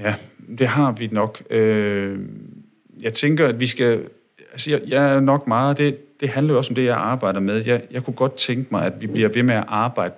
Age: 40-59